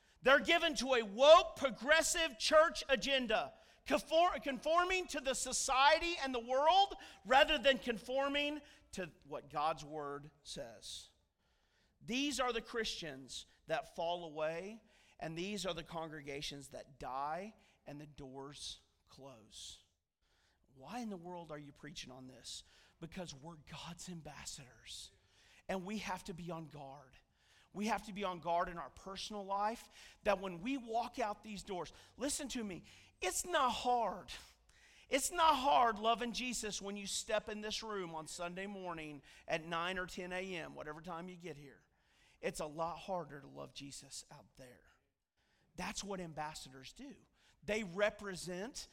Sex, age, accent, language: male, 40-59, American, English